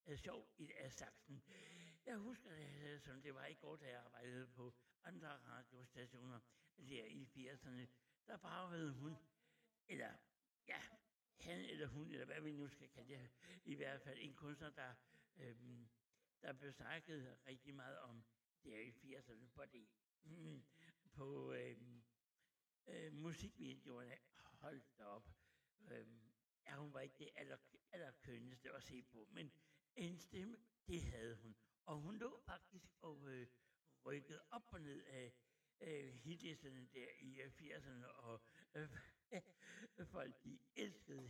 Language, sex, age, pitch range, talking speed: Italian, male, 60-79, 125-155 Hz, 140 wpm